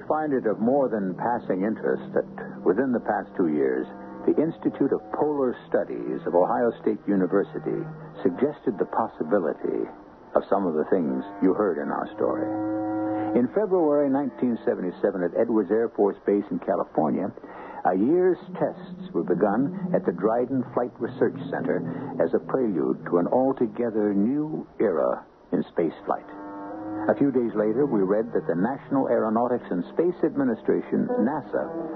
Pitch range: 100-150 Hz